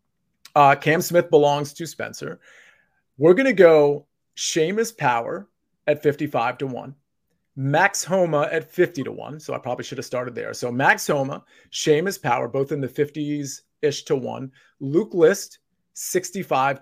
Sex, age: male, 30-49